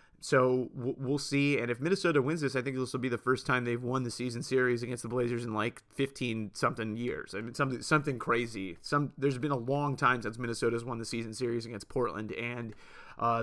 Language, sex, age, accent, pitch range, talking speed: English, male, 30-49, American, 125-140 Hz, 220 wpm